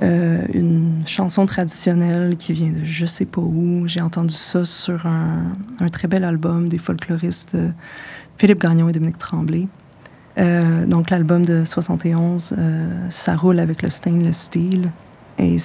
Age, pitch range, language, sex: 20-39, 160-180 Hz, French, female